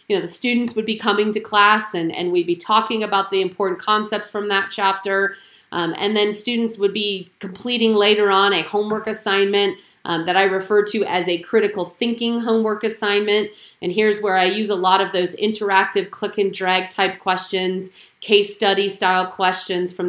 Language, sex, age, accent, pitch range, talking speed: English, female, 30-49, American, 180-215 Hz, 185 wpm